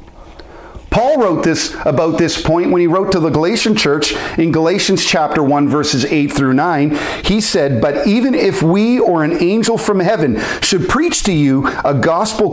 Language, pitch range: English, 150-215 Hz